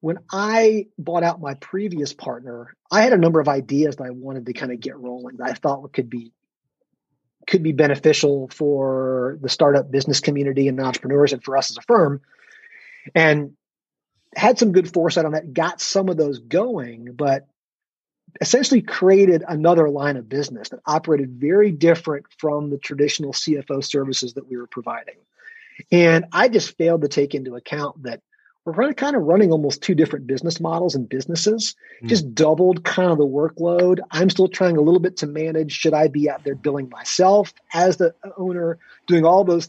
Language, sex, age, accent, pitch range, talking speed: English, male, 30-49, American, 140-175 Hz, 180 wpm